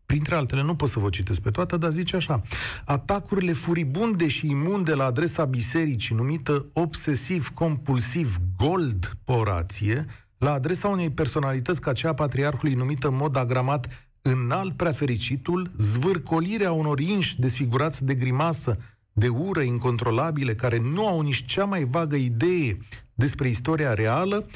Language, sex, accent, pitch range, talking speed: Romanian, male, native, 115-160 Hz, 135 wpm